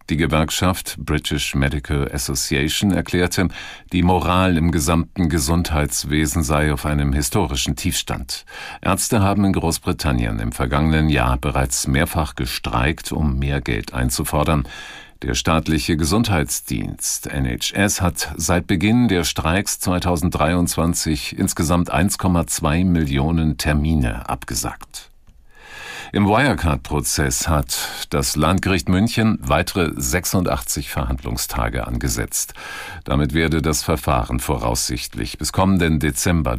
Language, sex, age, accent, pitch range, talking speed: German, male, 50-69, German, 70-90 Hz, 105 wpm